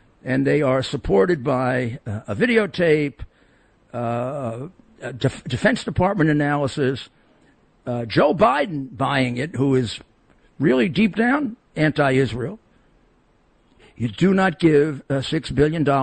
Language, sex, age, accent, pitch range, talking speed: English, male, 60-79, American, 120-155 Hz, 120 wpm